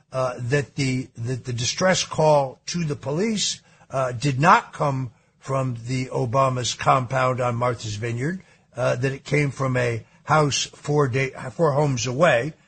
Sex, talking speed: male, 155 wpm